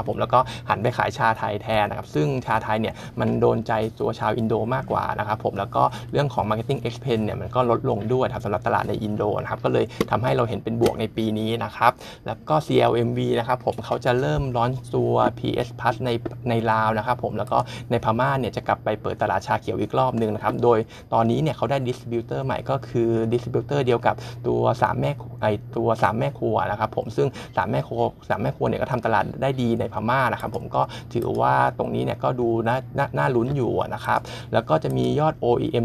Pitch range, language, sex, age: 110-125 Hz, Thai, male, 20-39